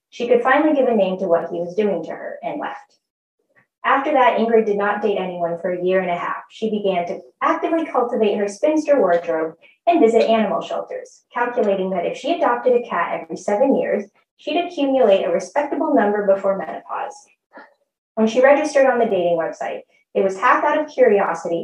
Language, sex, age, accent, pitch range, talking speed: English, female, 30-49, American, 195-295 Hz, 195 wpm